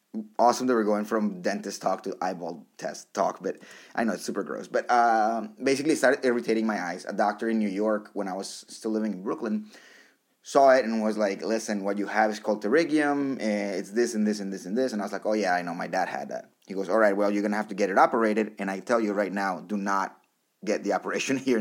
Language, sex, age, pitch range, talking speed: English, male, 30-49, 100-120 Hz, 265 wpm